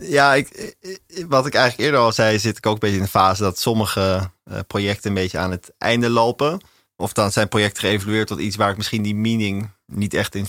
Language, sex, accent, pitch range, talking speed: Dutch, male, Dutch, 100-115 Hz, 230 wpm